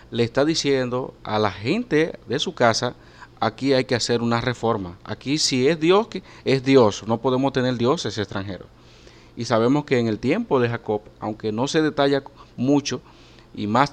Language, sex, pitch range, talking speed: Spanish, male, 110-140 Hz, 175 wpm